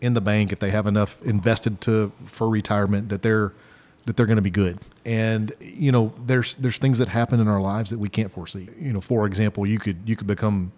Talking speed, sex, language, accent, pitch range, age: 240 wpm, male, English, American, 100-120 Hz, 40-59